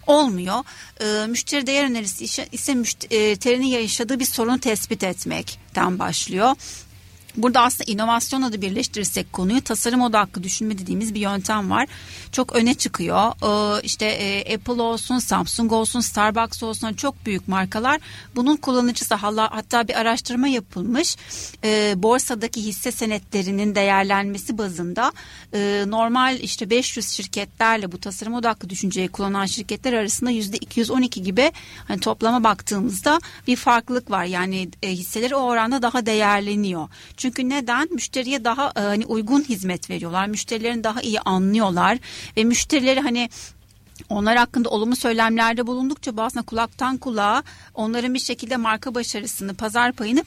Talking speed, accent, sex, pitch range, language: 135 wpm, native, female, 205-250 Hz, Turkish